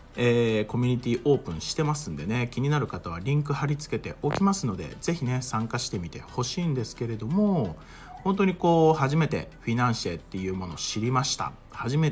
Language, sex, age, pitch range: Japanese, male, 40-59, 105-145 Hz